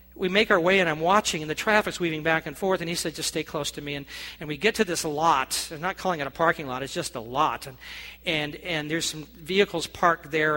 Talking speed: 275 wpm